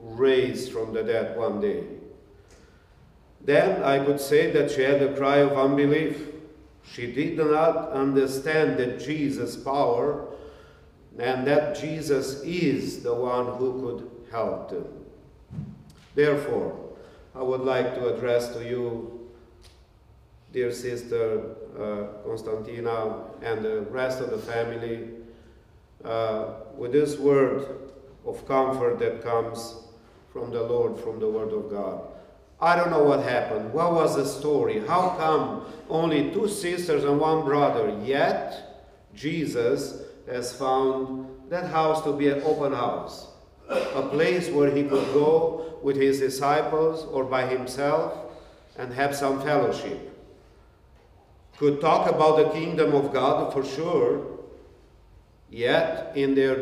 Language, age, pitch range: English, 50-69, 125-155 Hz